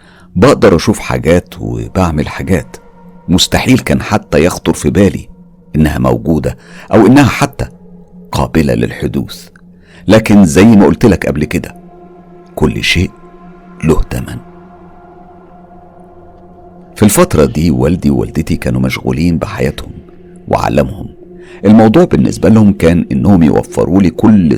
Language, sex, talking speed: Arabic, male, 110 wpm